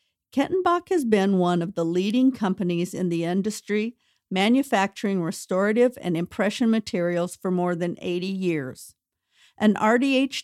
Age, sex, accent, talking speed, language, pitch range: 50-69, female, American, 130 wpm, English, 180-230 Hz